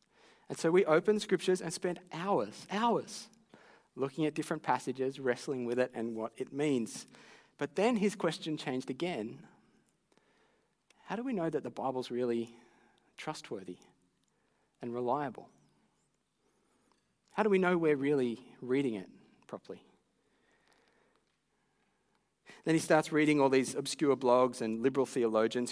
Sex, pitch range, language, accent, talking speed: male, 120-155 Hz, English, Australian, 135 wpm